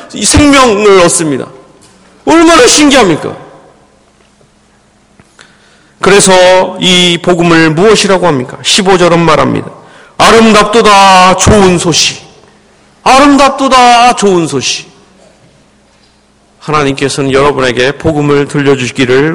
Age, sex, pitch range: 40-59, male, 160-225 Hz